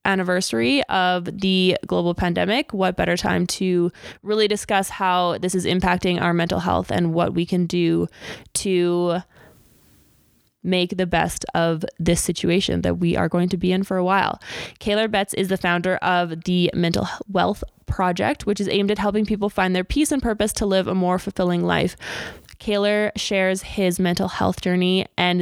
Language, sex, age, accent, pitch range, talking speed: English, female, 20-39, American, 175-195 Hz, 175 wpm